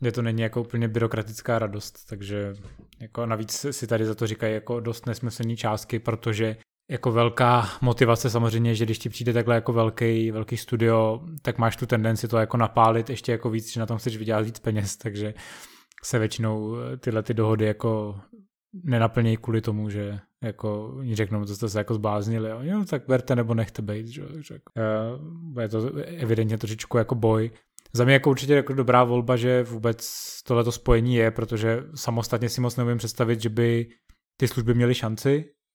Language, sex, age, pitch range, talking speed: Czech, male, 20-39, 110-125 Hz, 175 wpm